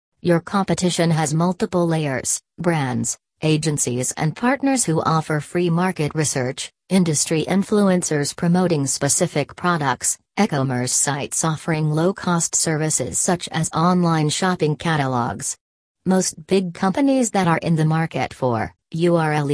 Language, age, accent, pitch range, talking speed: English, 40-59, American, 145-175 Hz, 120 wpm